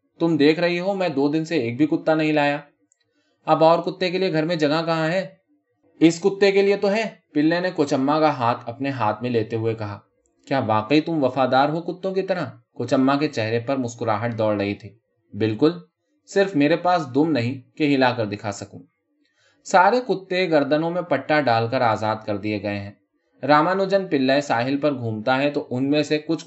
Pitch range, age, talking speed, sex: 115-165 Hz, 20-39, 200 wpm, male